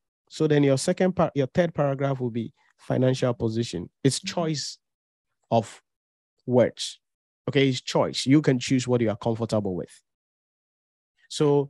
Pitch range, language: 125-155 Hz, English